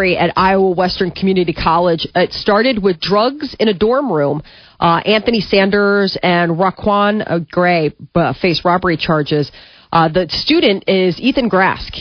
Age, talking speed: 30-49, 150 wpm